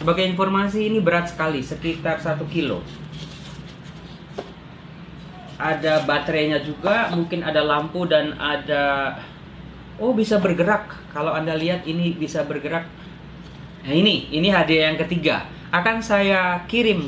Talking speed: 120 wpm